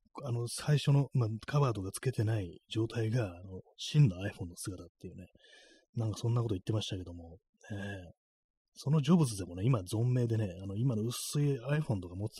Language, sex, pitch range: Japanese, male, 95-125 Hz